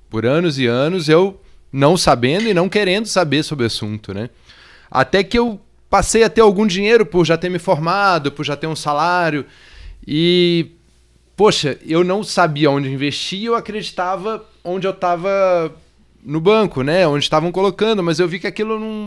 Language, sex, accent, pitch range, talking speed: Portuguese, male, Brazilian, 150-205 Hz, 175 wpm